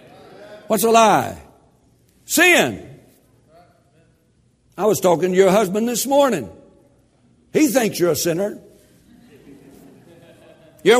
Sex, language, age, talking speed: male, English, 60-79, 100 wpm